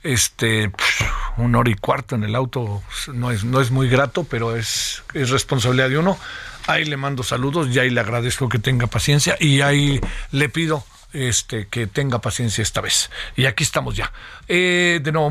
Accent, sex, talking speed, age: Mexican, male, 190 wpm, 50-69